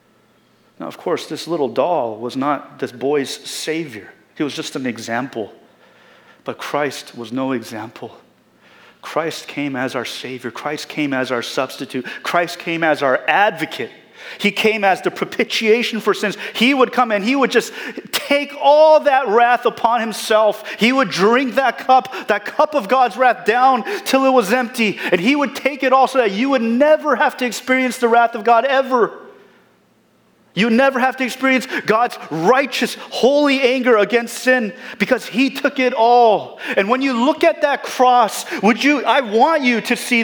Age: 30-49